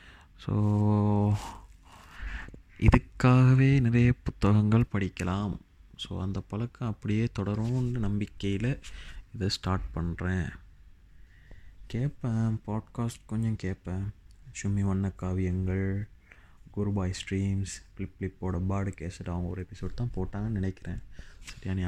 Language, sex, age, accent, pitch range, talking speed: Tamil, male, 20-39, native, 90-110 Hz, 95 wpm